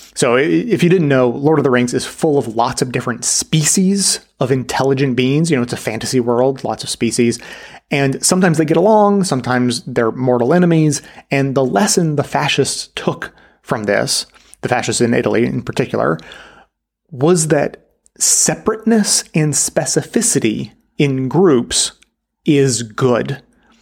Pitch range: 125-170 Hz